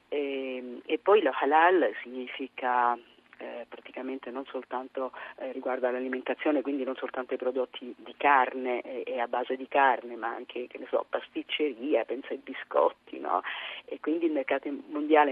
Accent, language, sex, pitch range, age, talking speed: native, Italian, female, 130-190 Hz, 40-59, 160 wpm